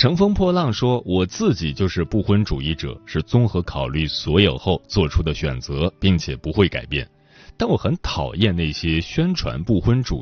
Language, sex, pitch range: Chinese, male, 80-135 Hz